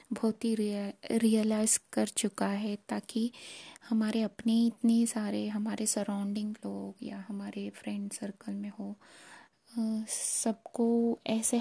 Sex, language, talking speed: female, Hindi, 120 wpm